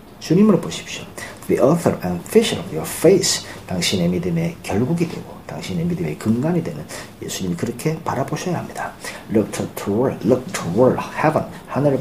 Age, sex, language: 40-59, male, Korean